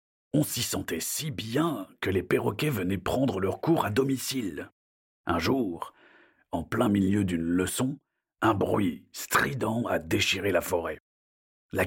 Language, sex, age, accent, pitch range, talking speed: French, male, 50-69, French, 90-125 Hz, 145 wpm